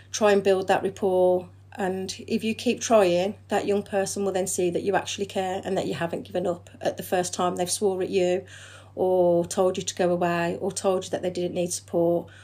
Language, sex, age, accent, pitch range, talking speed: English, female, 40-59, British, 175-200 Hz, 230 wpm